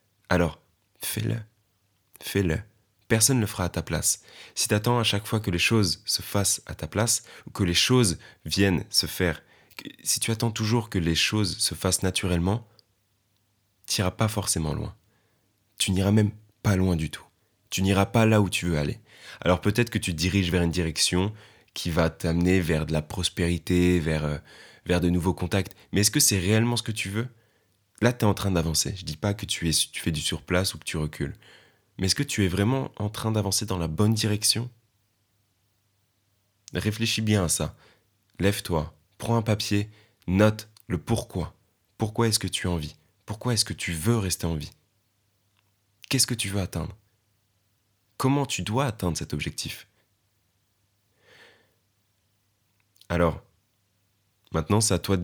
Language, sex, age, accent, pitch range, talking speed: French, male, 20-39, French, 90-110 Hz, 180 wpm